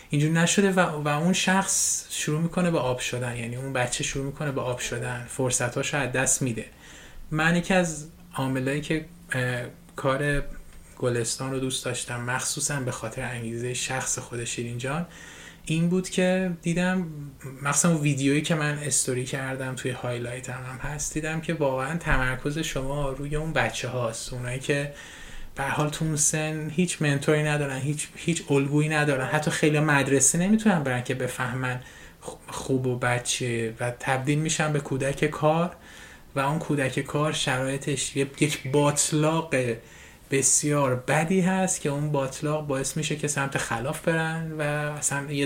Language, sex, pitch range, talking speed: Persian, male, 130-155 Hz, 150 wpm